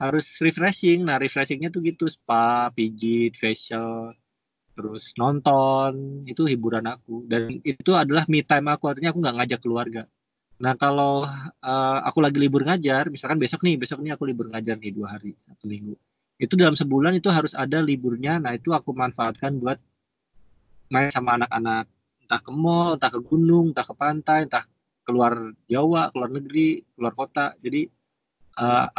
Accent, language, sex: native, Indonesian, male